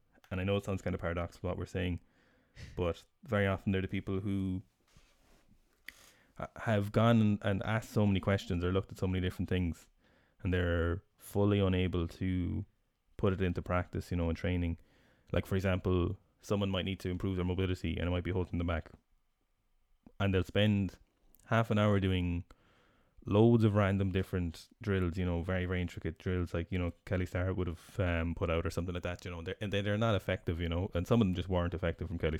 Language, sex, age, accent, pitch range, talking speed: English, male, 20-39, Irish, 90-100 Hz, 210 wpm